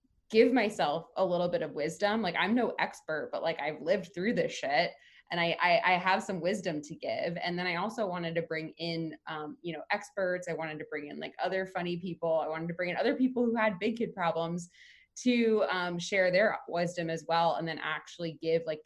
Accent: American